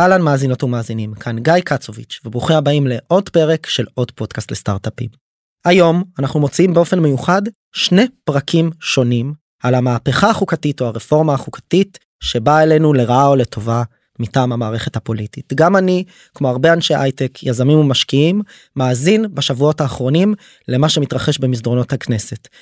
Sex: male